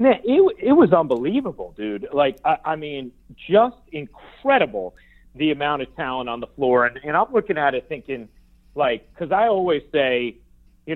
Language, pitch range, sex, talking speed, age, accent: English, 120-160 Hz, male, 170 wpm, 40-59, American